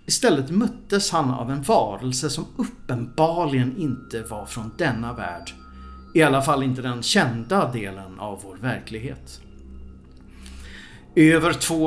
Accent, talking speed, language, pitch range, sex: Swedish, 125 wpm, English, 105-150 Hz, male